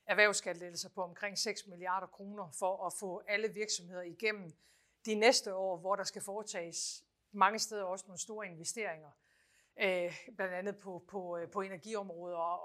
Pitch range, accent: 185-215 Hz, native